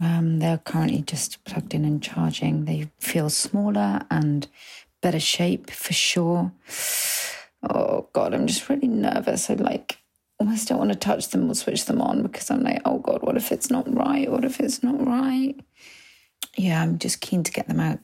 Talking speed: 190 wpm